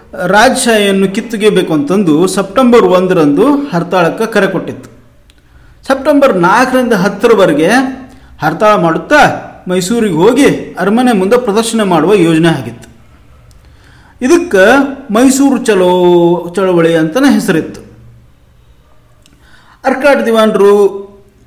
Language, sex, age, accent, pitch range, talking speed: Kannada, male, 40-59, native, 170-245 Hz, 85 wpm